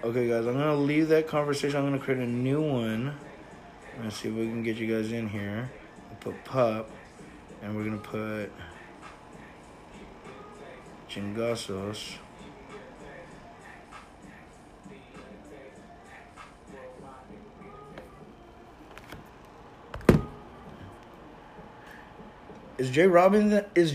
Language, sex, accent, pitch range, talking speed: English, male, American, 115-150 Hz, 85 wpm